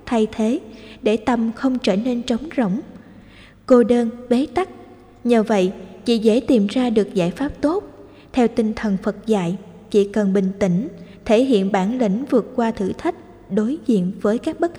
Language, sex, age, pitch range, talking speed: Vietnamese, female, 20-39, 205-250 Hz, 185 wpm